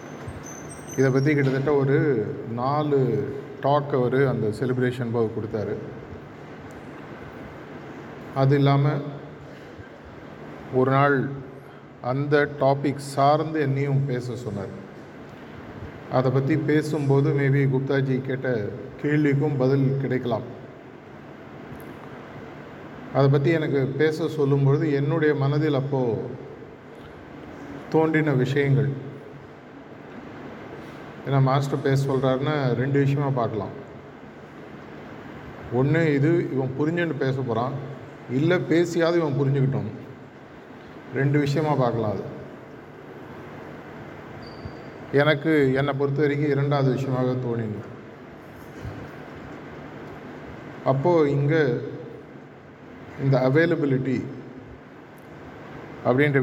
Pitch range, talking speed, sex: 130-150 Hz, 75 wpm, male